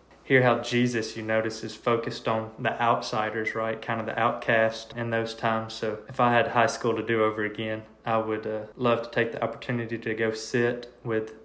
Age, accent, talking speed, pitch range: 20-39, American, 210 wpm, 110-115 Hz